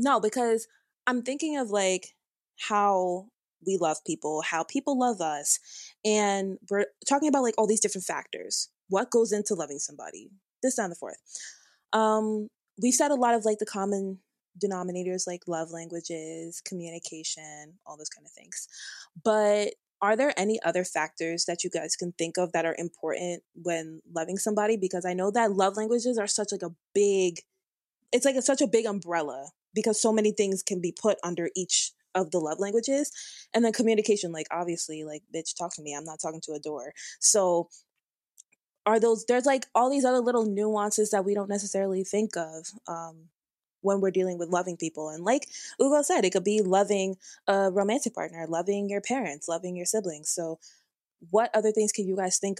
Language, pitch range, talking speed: English, 170-220 Hz, 185 wpm